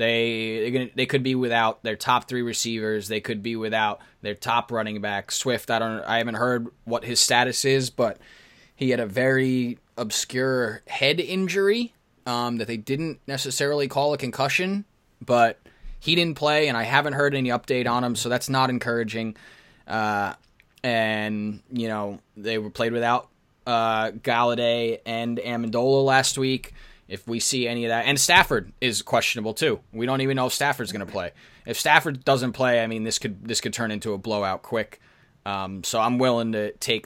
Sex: male